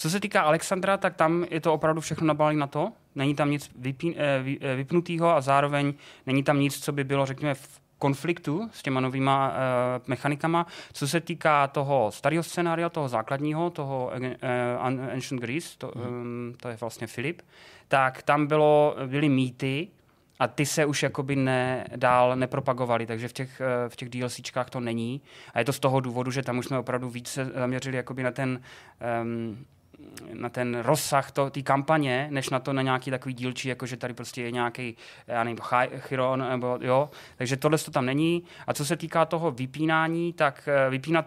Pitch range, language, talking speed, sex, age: 130-155 Hz, Czech, 175 wpm, male, 20-39